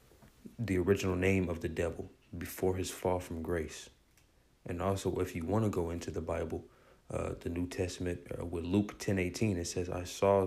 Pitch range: 85-95 Hz